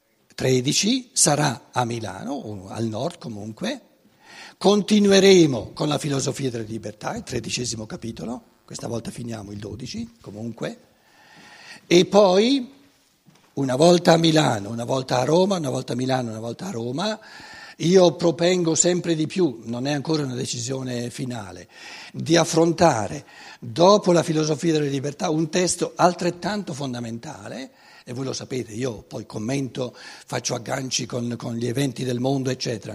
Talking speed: 145 wpm